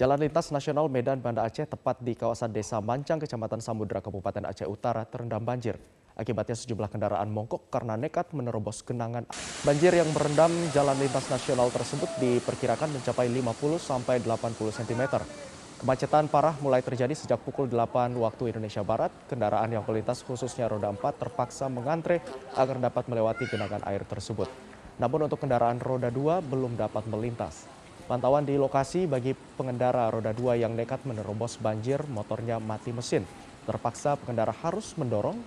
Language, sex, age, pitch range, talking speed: Indonesian, male, 20-39, 110-140 Hz, 150 wpm